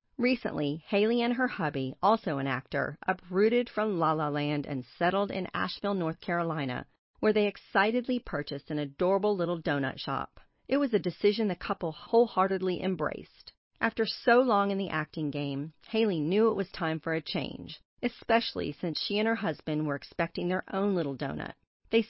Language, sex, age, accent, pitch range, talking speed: English, female, 40-59, American, 155-205 Hz, 175 wpm